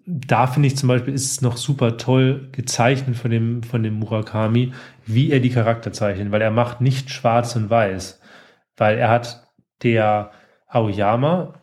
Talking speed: 170 wpm